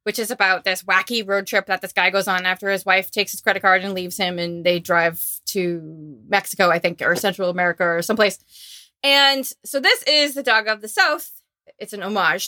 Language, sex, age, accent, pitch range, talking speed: English, female, 20-39, American, 200-250 Hz, 220 wpm